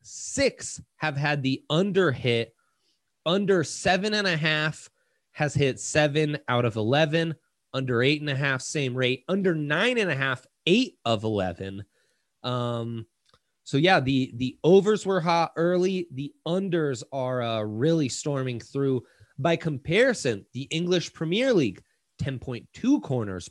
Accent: American